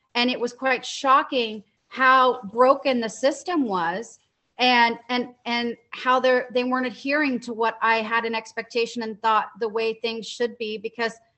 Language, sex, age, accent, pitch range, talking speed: English, female, 30-49, American, 220-255 Hz, 170 wpm